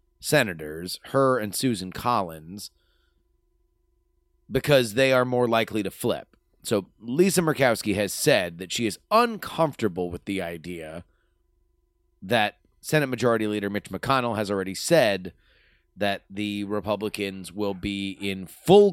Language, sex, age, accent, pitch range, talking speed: English, male, 30-49, American, 100-150 Hz, 125 wpm